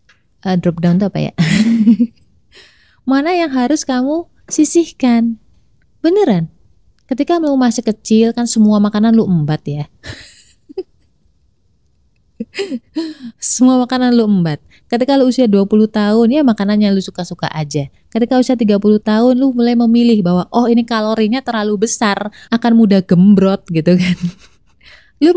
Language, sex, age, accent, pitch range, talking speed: Indonesian, female, 20-39, native, 180-240 Hz, 130 wpm